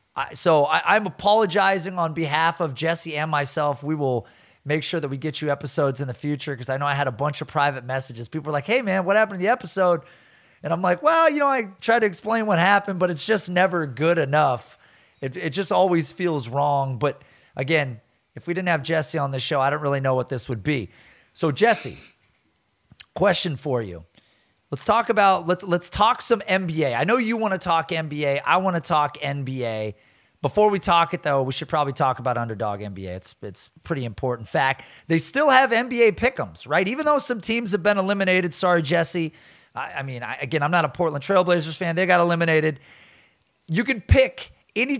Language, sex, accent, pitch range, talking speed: English, male, American, 140-190 Hz, 215 wpm